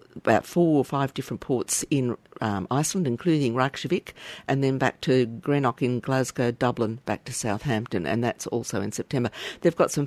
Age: 50-69